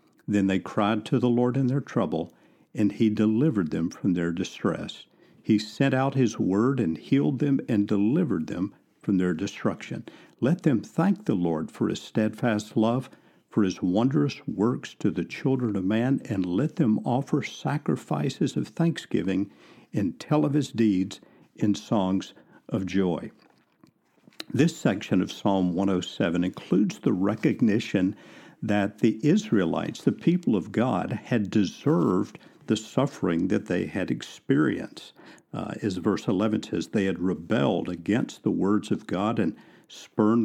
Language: English